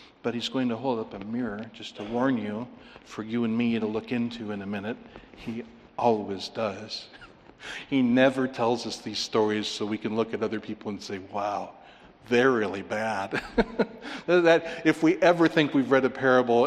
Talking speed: 185 wpm